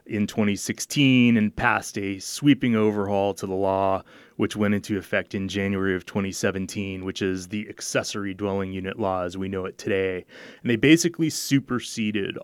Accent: American